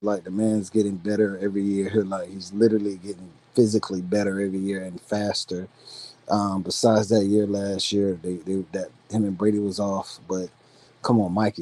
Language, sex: English, male